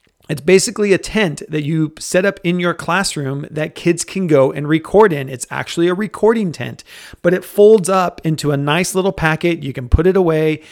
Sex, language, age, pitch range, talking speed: male, English, 30-49, 135-160 Hz, 205 wpm